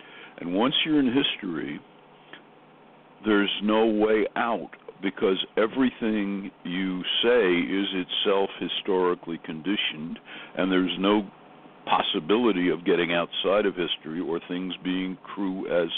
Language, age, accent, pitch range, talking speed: English, 60-79, American, 90-115 Hz, 115 wpm